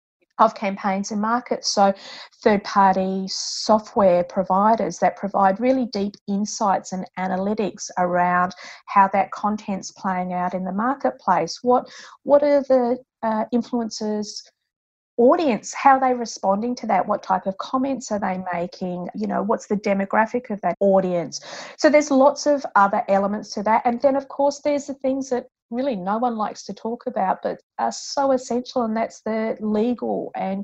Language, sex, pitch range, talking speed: English, female, 195-240 Hz, 165 wpm